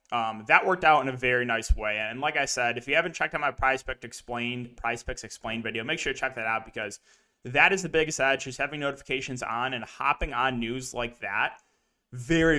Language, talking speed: English, 225 wpm